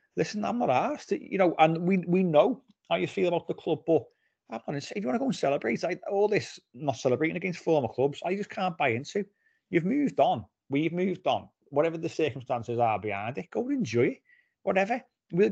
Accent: British